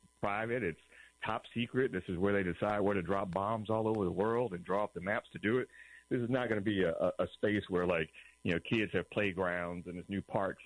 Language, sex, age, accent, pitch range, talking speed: English, male, 40-59, American, 90-115 Hz, 255 wpm